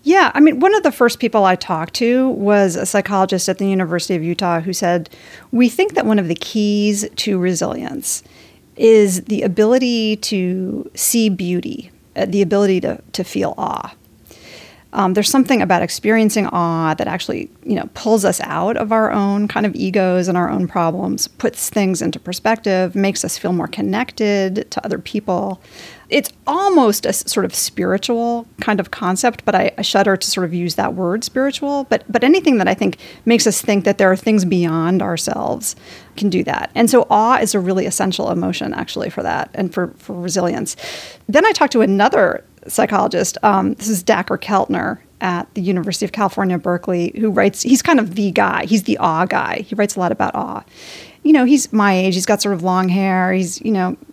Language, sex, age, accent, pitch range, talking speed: English, female, 40-59, American, 185-230 Hz, 200 wpm